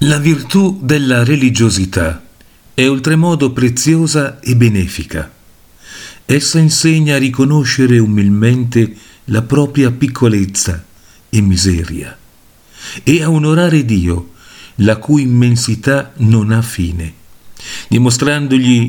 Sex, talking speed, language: male, 95 wpm, Italian